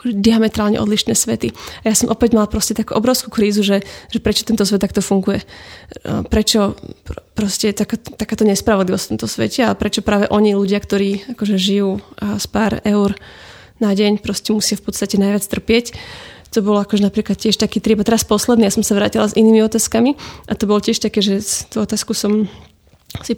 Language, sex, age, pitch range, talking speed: Slovak, female, 20-39, 205-220 Hz, 180 wpm